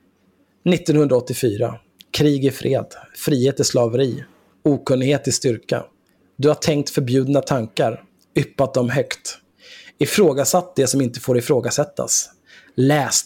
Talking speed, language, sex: 115 wpm, Swedish, male